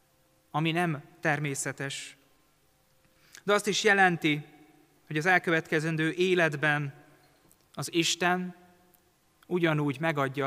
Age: 30-49